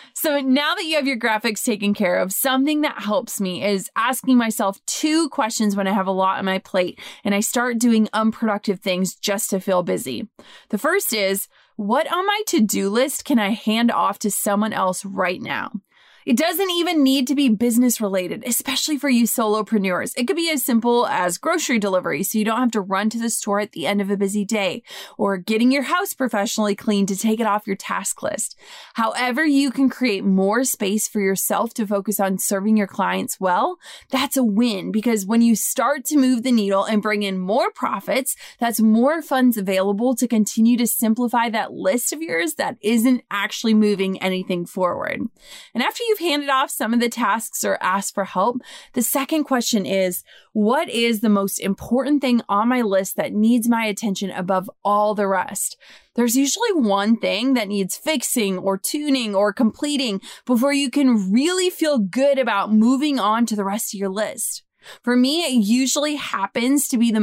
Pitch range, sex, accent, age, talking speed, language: 200-265 Hz, female, American, 20-39, 195 wpm, English